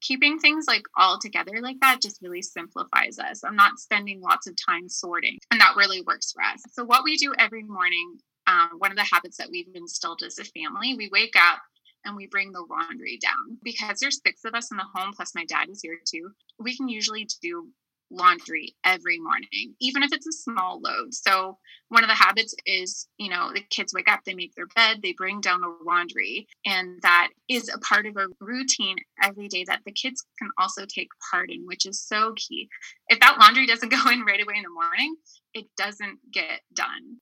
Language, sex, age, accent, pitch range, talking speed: English, female, 20-39, American, 190-265 Hz, 220 wpm